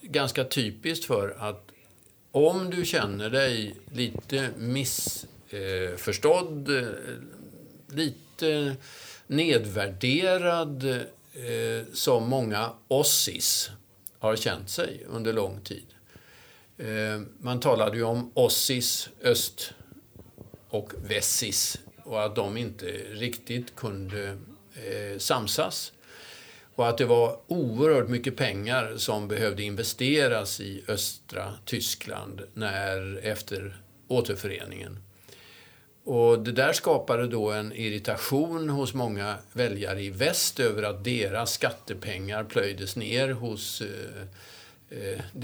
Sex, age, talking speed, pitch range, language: male, 50-69, 95 wpm, 100-125 Hz, English